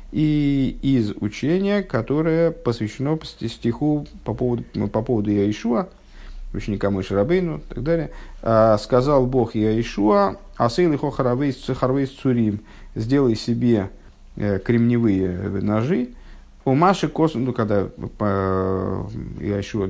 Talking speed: 110 wpm